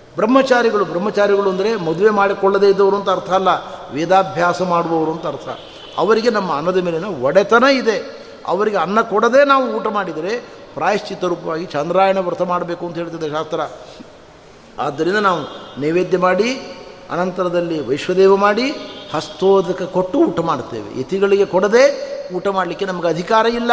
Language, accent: Kannada, native